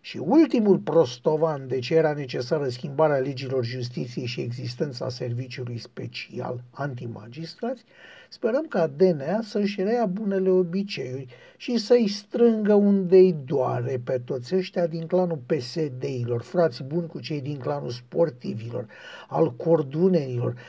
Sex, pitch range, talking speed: male, 135-185 Hz, 120 wpm